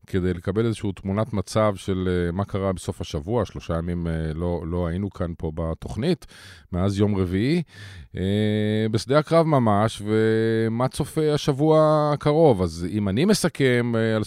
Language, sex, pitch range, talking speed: Hebrew, male, 90-115 Hz, 140 wpm